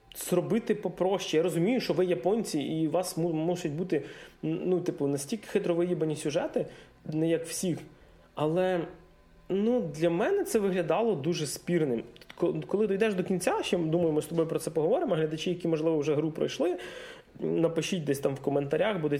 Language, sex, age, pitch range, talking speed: Ukrainian, male, 30-49, 150-180 Hz, 165 wpm